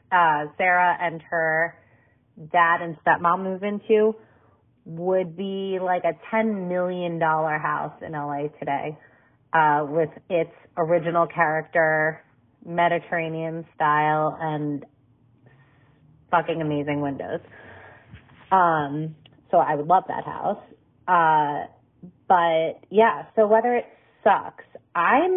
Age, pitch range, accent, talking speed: 30-49, 155-190 Hz, American, 105 wpm